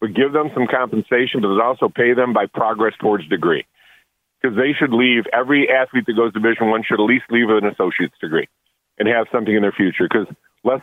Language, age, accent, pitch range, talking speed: English, 40-59, American, 100-115 Hz, 220 wpm